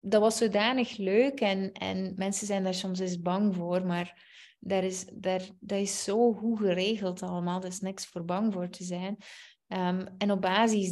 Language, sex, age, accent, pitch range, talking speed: Dutch, female, 20-39, Dutch, 180-205 Hz, 200 wpm